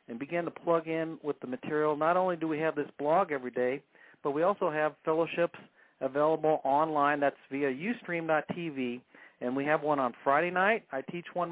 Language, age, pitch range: English, 50-69, 135-165 Hz